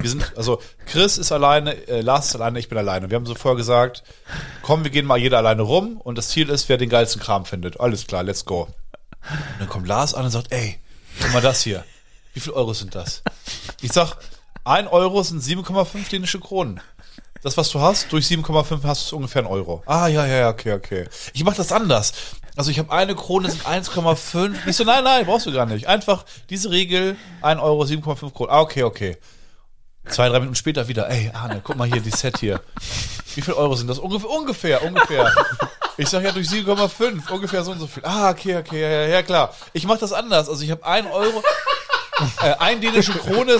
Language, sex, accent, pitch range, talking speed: German, male, German, 125-195 Hz, 215 wpm